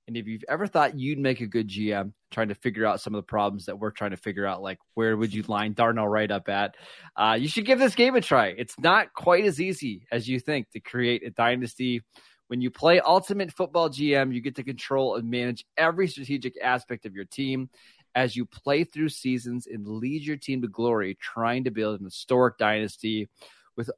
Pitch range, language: 110-140 Hz, English